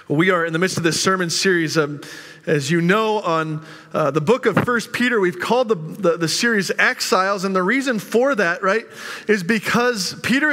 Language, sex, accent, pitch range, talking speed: English, male, American, 160-215 Hz, 205 wpm